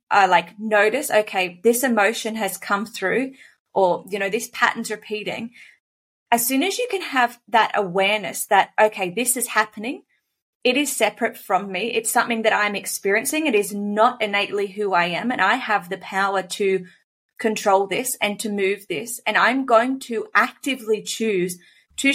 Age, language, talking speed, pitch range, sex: 20-39, English, 175 wpm, 200-235 Hz, female